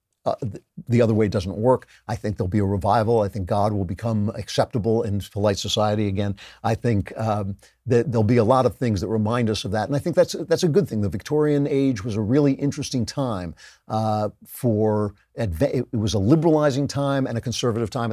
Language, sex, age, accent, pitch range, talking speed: English, male, 50-69, American, 105-125 Hz, 210 wpm